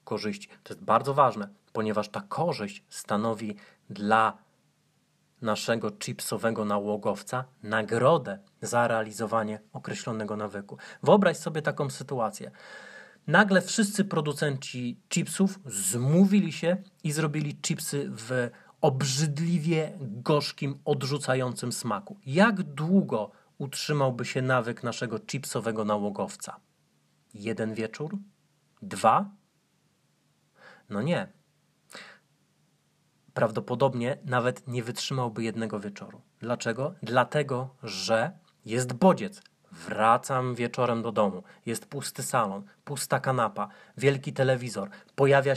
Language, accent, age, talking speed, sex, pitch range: Polish, native, 30-49, 95 wpm, male, 115-155 Hz